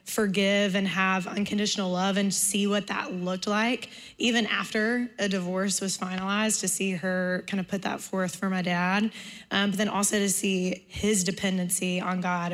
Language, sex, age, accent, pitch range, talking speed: English, female, 20-39, American, 185-200 Hz, 180 wpm